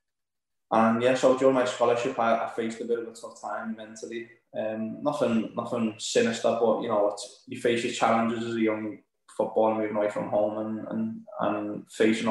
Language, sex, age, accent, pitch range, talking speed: English, male, 20-39, British, 105-120 Hz, 195 wpm